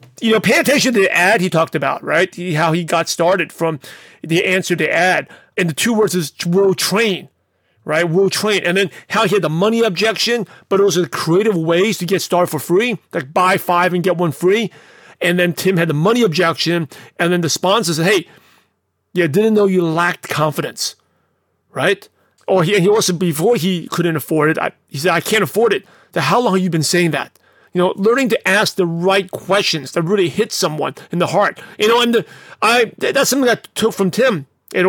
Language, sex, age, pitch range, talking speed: English, male, 40-59, 170-210 Hz, 220 wpm